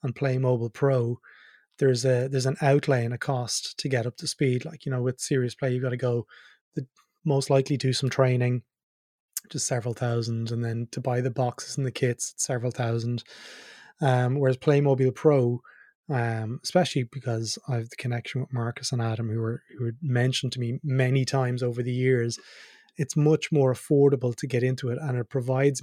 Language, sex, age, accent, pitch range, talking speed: English, male, 20-39, Irish, 120-135 Hz, 195 wpm